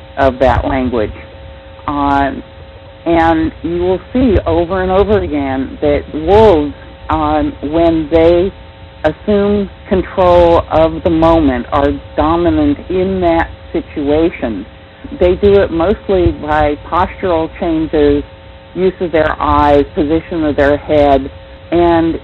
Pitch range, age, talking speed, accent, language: 140-170 Hz, 50-69, 115 wpm, American, English